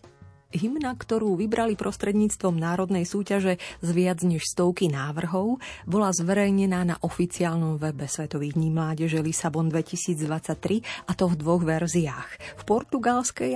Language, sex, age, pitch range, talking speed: Slovak, female, 30-49, 155-205 Hz, 130 wpm